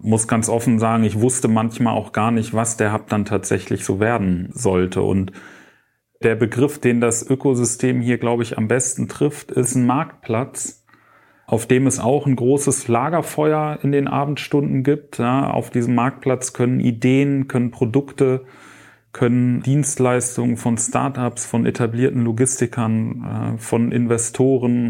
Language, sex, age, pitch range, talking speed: German, male, 40-59, 120-140 Hz, 145 wpm